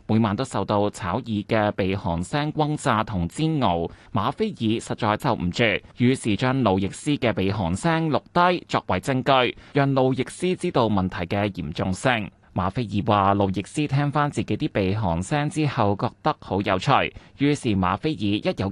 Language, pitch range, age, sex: Chinese, 100-145 Hz, 20-39, male